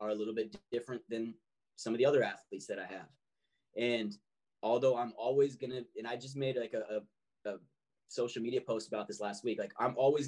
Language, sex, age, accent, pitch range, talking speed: English, male, 20-39, American, 110-135 Hz, 215 wpm